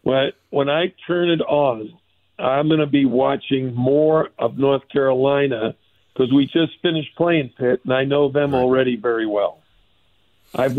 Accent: American